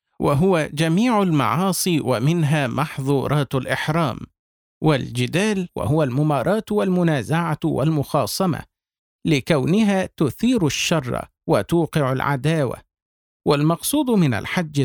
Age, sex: 50-69, male